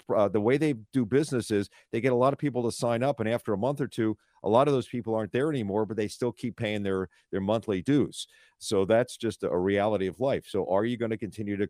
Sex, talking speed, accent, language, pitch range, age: male, 270 wpm, American, English, 100-125 Hz, 50-69